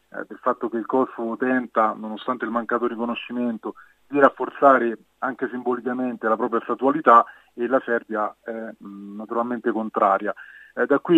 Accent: native